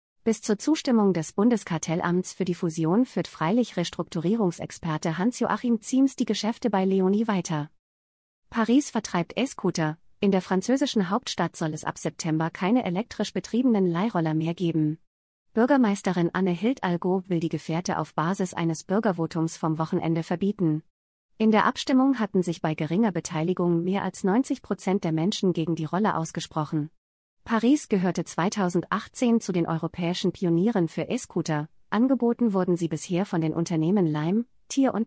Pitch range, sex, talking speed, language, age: 165-220 Hz, female, 145 wpm, German, 30-49